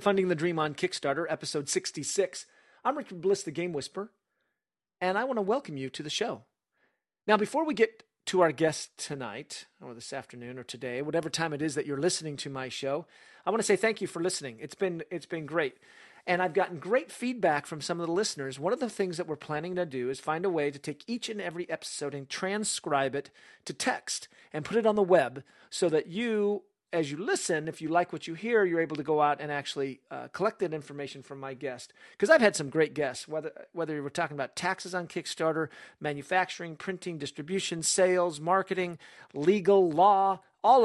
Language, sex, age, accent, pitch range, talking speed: English, male, 40-59, American, 150-195 Hz, 215 wpm